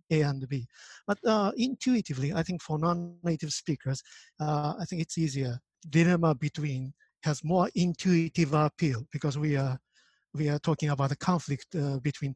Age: 50-69